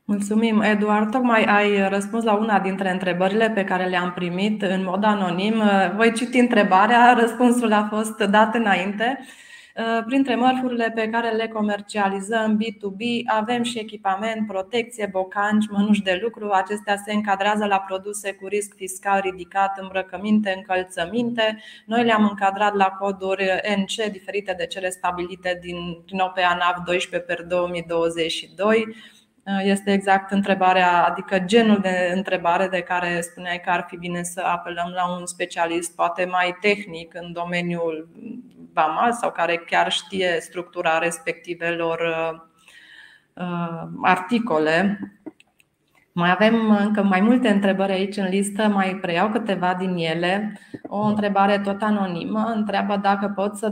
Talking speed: 135 wpm